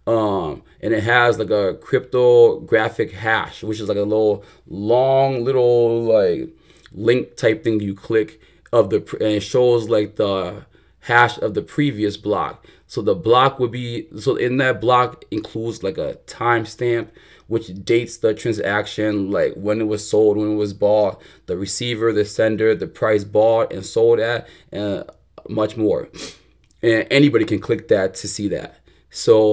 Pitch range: 105-120 Hz